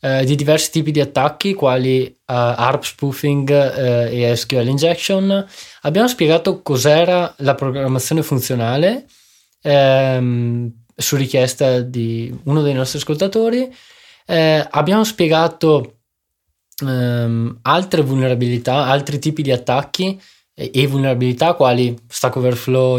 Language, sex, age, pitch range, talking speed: Italian, male, 20-39, 125-155 Hz, 115 wpm